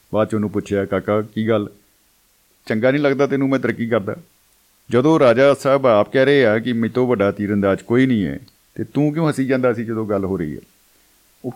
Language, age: Punjabi, 50-69